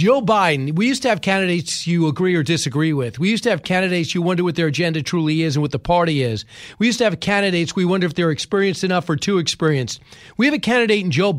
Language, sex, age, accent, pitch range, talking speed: English, male, 40-59, American, 165-215 Hz, 260 wpm